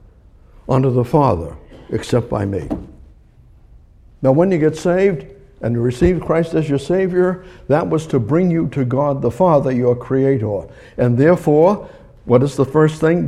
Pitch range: 105-145 Hz